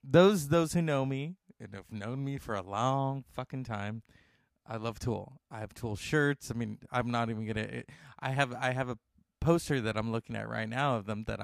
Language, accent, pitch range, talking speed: English, American, 105-135 Hz, 225 wpm